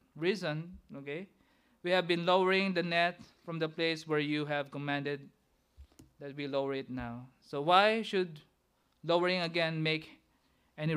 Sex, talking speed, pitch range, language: male, 150 wpm, 145-195 Hz, English